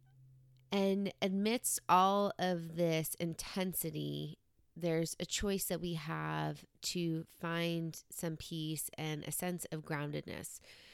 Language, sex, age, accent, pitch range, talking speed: English, female, 20-39, American, 160-185 Hz, 115 wpm